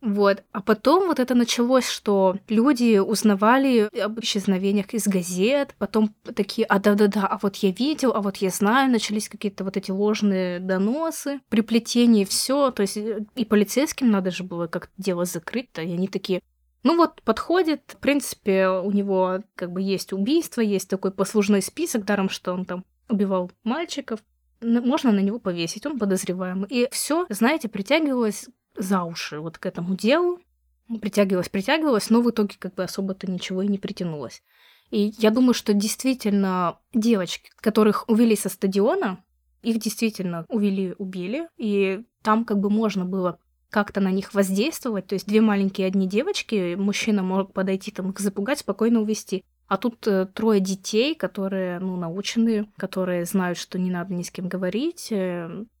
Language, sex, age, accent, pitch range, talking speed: Russian, female, 20-39, native, 190-230 Hz, 160 wpm